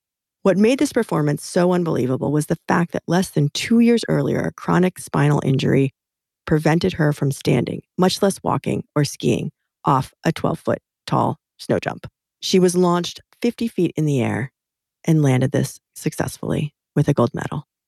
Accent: American